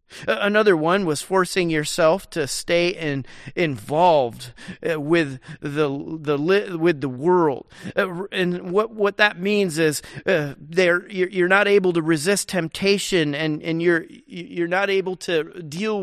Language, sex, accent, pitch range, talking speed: English, male, American, 155-190 Hz, 145 wpm